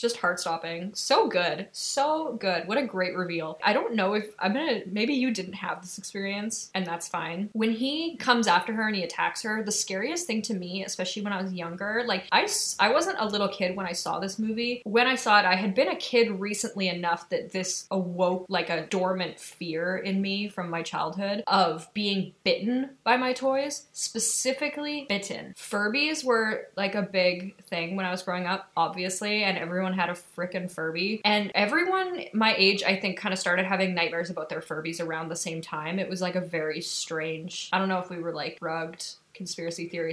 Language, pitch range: English, 180-220 Hz